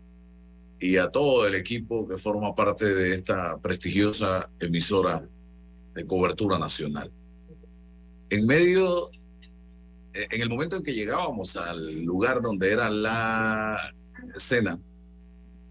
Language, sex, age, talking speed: Spanish, male, 50-69, 110 wpm